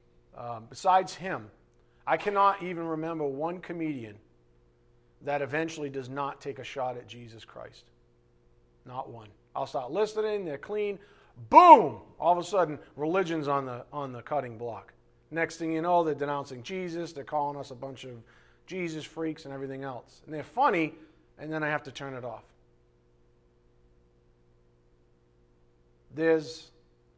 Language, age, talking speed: English, 40-59, 150 wpm